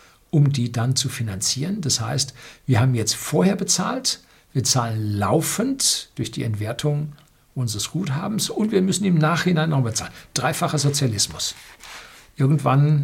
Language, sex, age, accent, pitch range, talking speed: German, male, 60-79, German, 115-150 Hz, 140 wpm